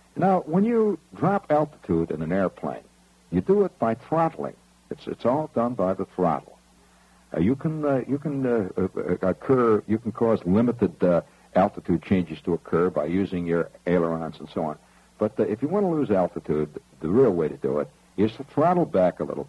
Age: 60-79